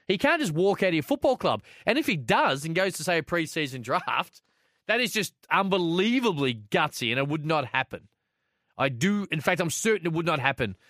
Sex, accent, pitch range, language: male, Australian, 125-165 Hz, English